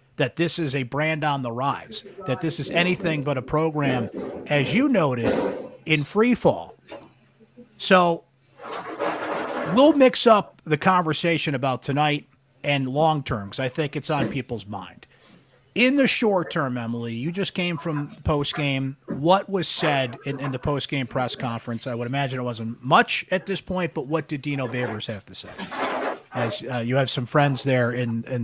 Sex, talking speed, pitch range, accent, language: male, 180 wpm, 130-160 Hz, American, English